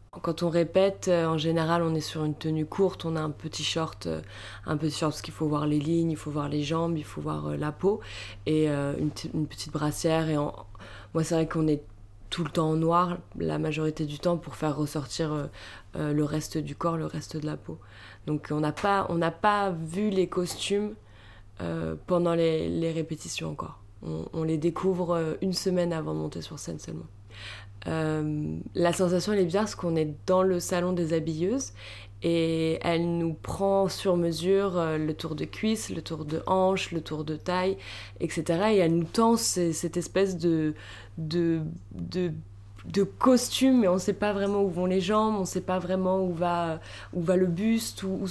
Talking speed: 200 wpm